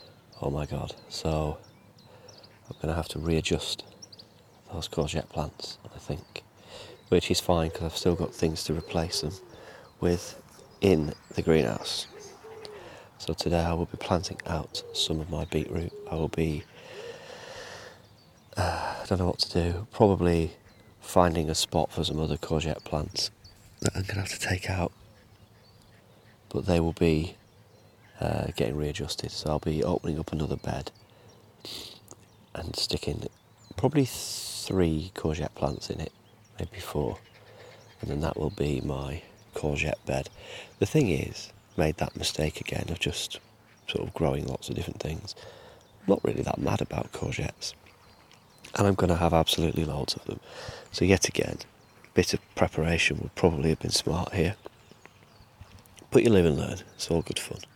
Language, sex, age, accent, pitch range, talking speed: English, male, 30-49, British, 80-110 Hz, 160 wpm